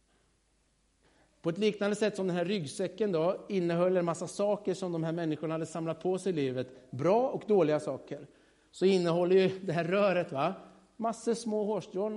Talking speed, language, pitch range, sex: 180 wpm, Swedish, 140-205 Hz, male